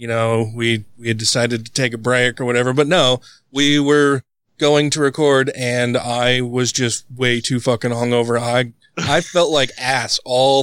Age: 20-39